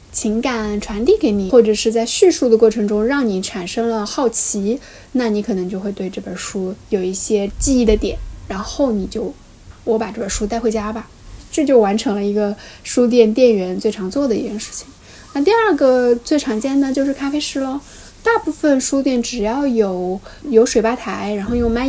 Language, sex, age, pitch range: Chinese, female, 10-29, 210-265 Hz